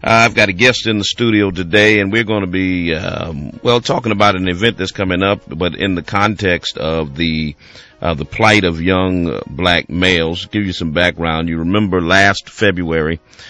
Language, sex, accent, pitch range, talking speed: English, male, American, 80-95 Hz, 190 wpm